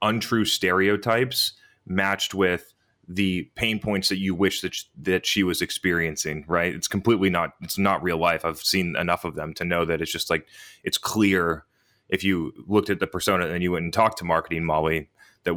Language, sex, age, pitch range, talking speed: English, male, 30-49, 85-100 Hz, 200 wpm